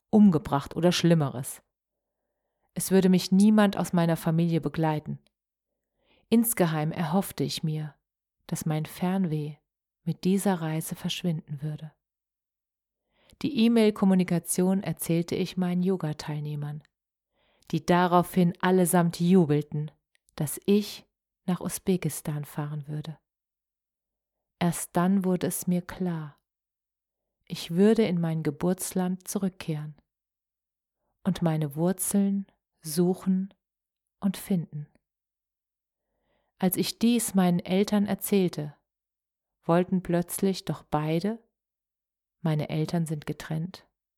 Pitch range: 160-190 Hz